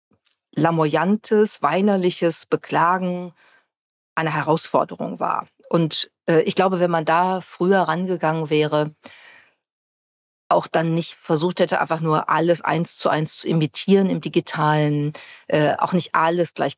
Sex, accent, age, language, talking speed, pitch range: female, German, 40-59, German, 125 wpm, 150-180 Hz